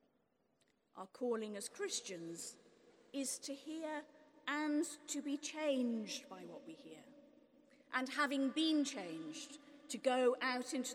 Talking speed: 125 wpm